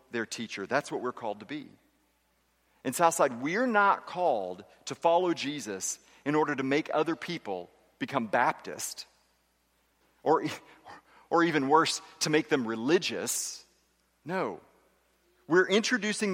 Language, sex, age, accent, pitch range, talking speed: English, male, 40-59, American, 125-190 Hz, 130 wpm